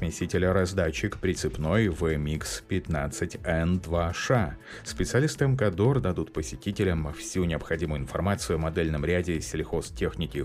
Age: 30-49